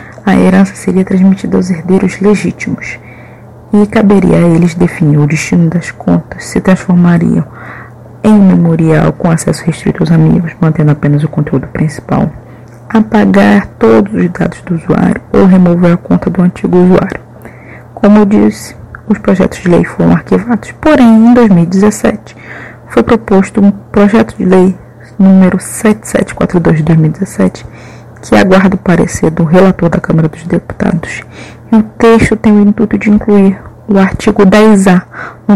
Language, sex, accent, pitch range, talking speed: Portuguese, female, Brazilian, 170-205 Hz, 145 wpm